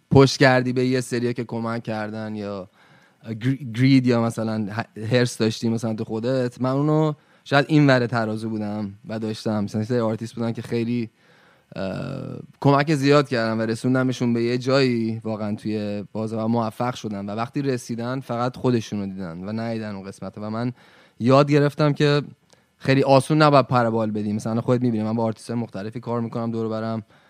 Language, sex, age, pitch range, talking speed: Persian, male, 20-39, 105-125 Hz, 165 wpm